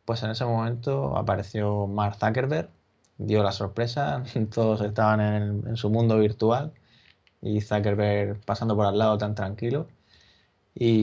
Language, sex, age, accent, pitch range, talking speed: Spanish, male, 20-39, Spanish, 105-120 Hz, 140 wpm